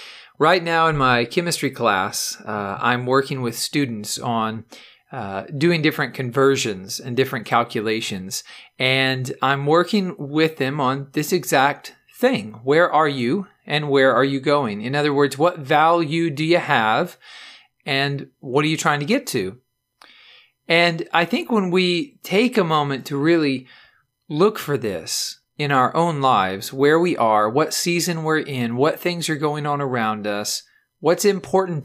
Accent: American